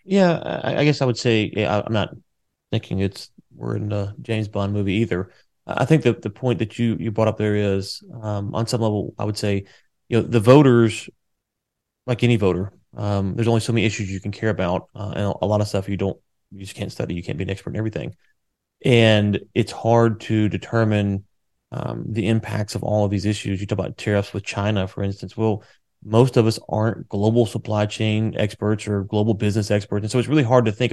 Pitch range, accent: 100-115 Hz, American